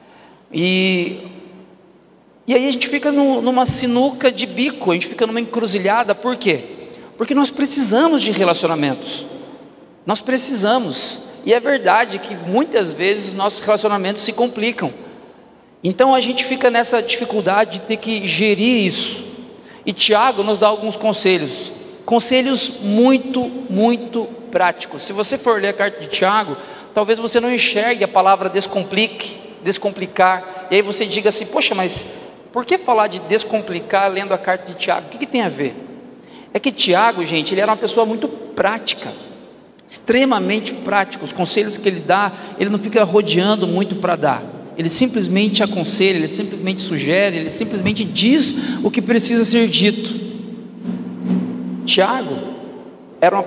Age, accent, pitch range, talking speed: 40-59, Brazilian, 185-235 Hz, 150 wpm